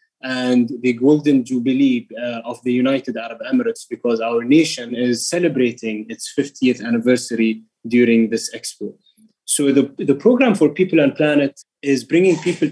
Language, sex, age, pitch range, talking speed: English, male, 20-39, 125-180 Hz, 145 wpm